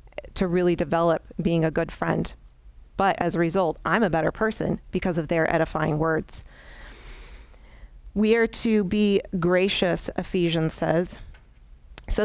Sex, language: female, English